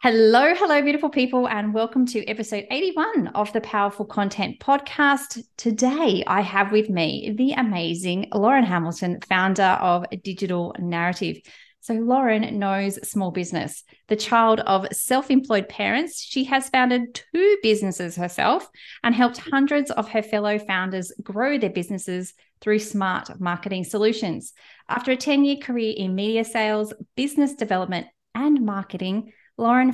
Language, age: English, 30-49